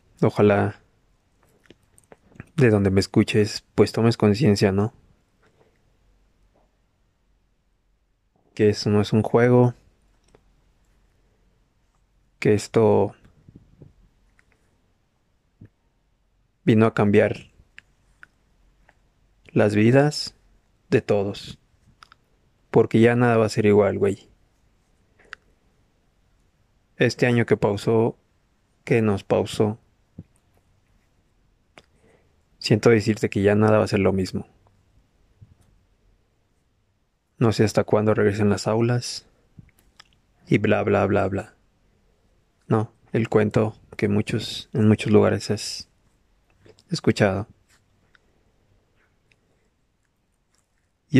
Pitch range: 100-115 Hz